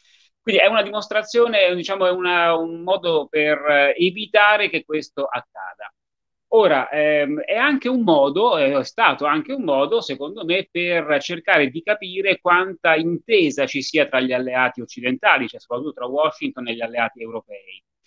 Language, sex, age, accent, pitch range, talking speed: Italian, male, 30-49, native, 140-195 Hz, 155 wpm